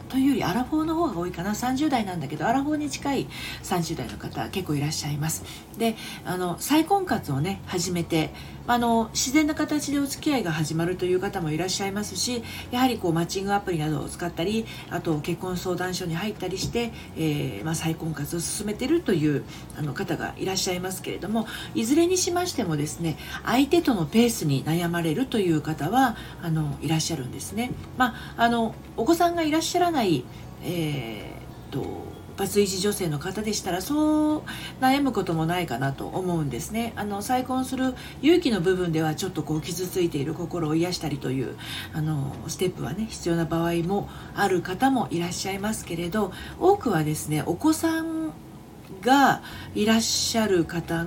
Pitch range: 160-245 Hz